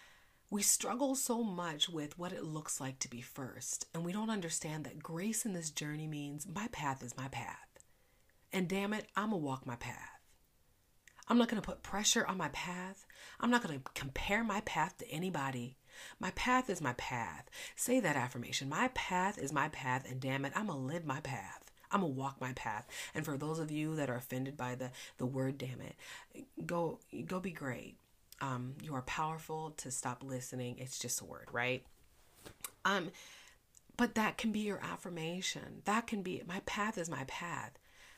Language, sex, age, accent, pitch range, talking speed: English, female, 40-59, American, 135-215 Hz, 200 wpm